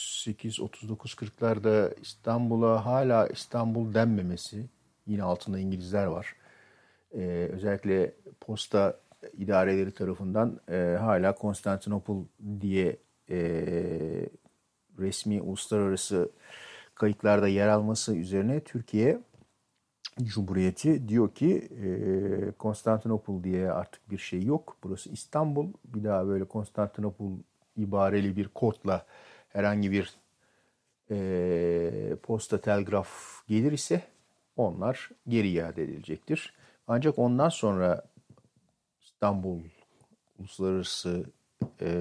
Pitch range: 95-115 Hz